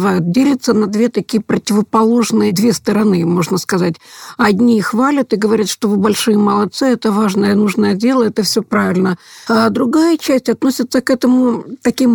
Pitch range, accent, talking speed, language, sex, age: 210-250 Hz, native, 155 wpm, Russian, female, 50-69